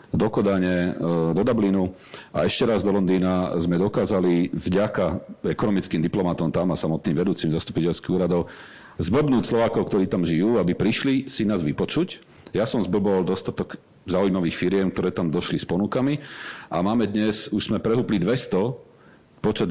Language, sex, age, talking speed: Slovak, male, 40-59, 150 wpm